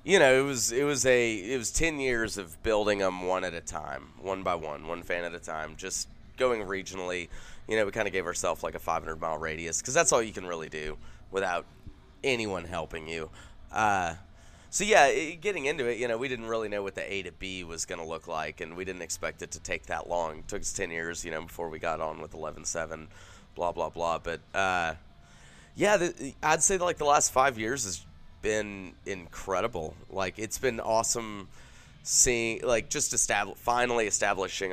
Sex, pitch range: male, 80-110 Hz